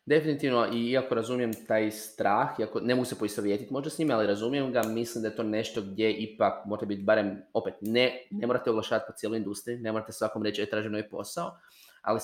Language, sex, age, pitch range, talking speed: Croatian, male, 20-39, 110-140 Hz, 205 wpm